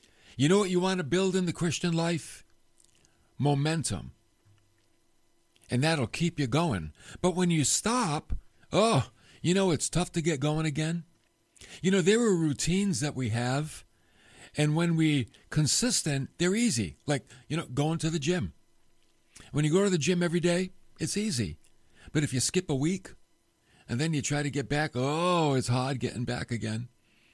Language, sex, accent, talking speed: English, male, American, 175 wpm